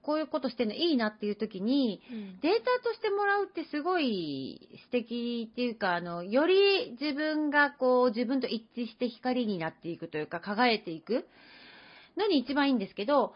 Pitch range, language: 210-300 Hz, Japanese